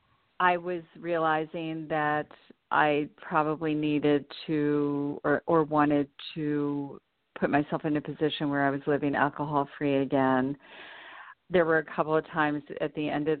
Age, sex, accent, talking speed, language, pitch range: 50-69, female, American, 150 wpm, English, 145-165 Hz